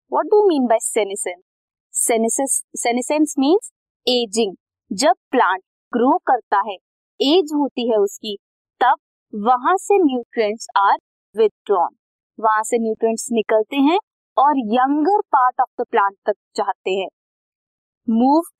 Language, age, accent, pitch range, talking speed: Hindi, 20-39, native, 215-310 Hz, 65 wpm